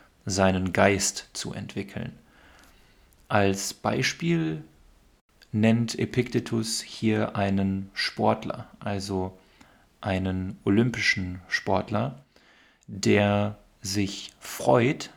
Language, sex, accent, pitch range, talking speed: German, male, German, 95-110 Hz, 70 wpm